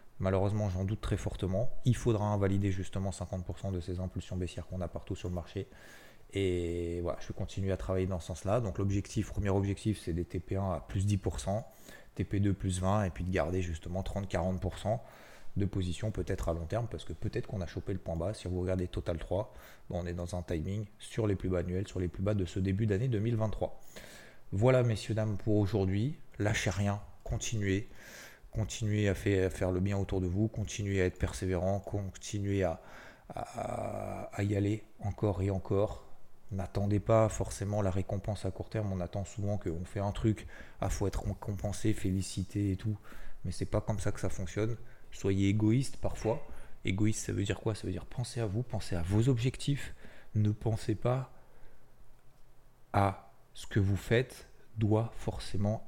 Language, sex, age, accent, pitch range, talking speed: French, male, 20-39, French, 95-110 Hz, 190 wpm